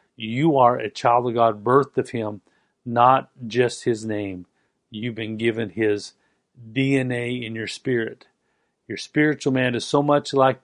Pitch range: 115-140 Hz